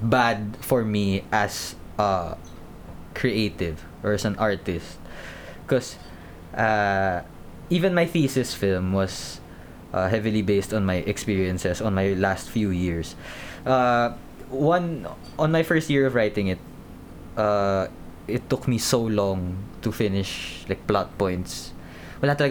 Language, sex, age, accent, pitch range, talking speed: Filipino, male, 20-39, native, 90-120 Hz, 130 wpm